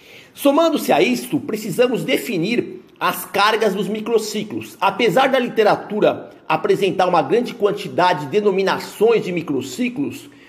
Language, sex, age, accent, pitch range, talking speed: Portuguese, male, 50-69, Brazilian, 195-255 Hz, 115 wpm